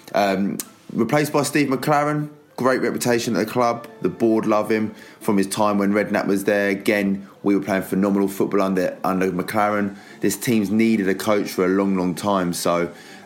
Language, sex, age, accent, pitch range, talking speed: English, male, 20-39, British, 95-110 Hz, 190 wpm